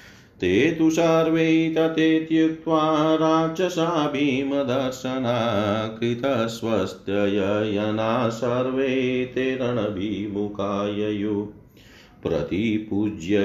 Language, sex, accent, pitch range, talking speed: Hindi, male, native, 105-140 Hz, 45 wpm